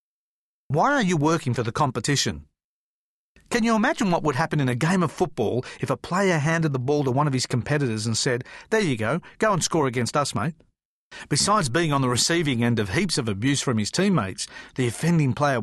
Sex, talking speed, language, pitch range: male, 215 wpm, English, 115-160 Hz